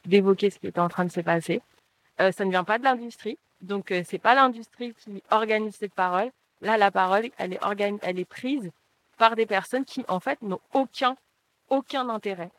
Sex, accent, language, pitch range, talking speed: female, French, French, 185-230 Hz, 210 wpm